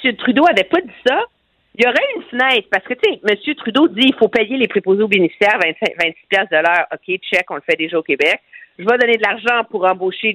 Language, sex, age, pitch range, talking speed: French, female, 50-69, 200-290 Hz, 245 wpm